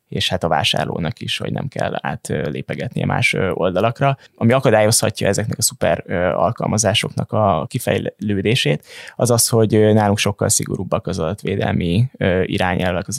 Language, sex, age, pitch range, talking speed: Hungarian, male, 20-39, 100-120 Hz, 135 wpm